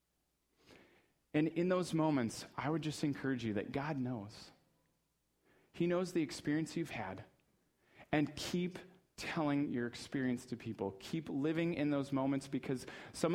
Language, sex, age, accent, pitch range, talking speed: English, male, 30-49, American, 115-155 Hz, 145 wpm